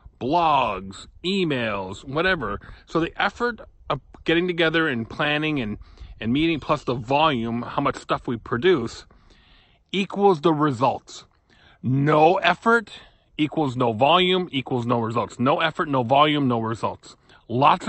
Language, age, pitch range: English, 30-49, 125-170 Hz